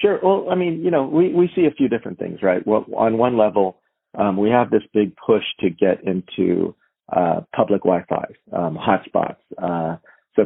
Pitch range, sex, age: 85-110 Hz, male, 40-59